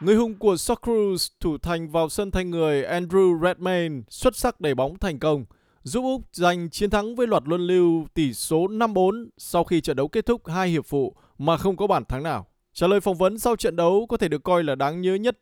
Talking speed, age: 235 wpm, 20-39